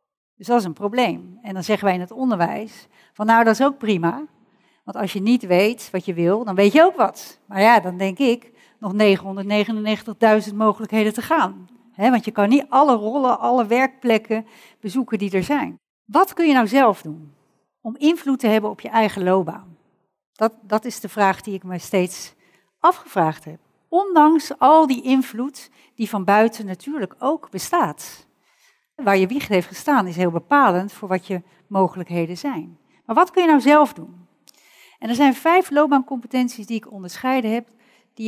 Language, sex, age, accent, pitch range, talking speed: Dutch, female, 60-79, Dutch, 195-270 Hz, 185 wpm